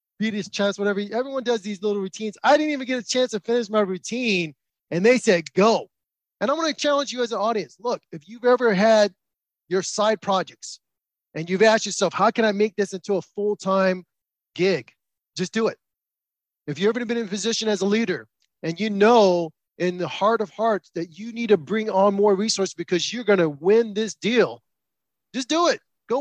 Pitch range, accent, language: 200-245 Hz, American, English